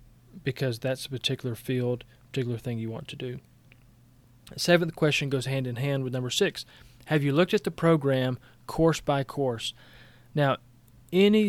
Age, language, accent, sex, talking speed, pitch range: 30-49, English, American, male, 165 wpm, 125-155 Hz